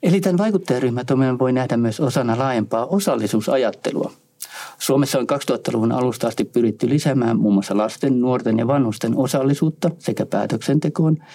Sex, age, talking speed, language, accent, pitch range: male, 50-69, 130 wpm, Finnish, native, 115-155 Hz